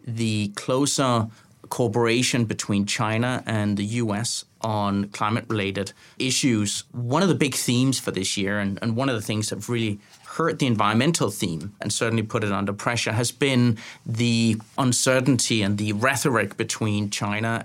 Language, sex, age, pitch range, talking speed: English, male, 30-49, 110-130 Hz, 160 wpm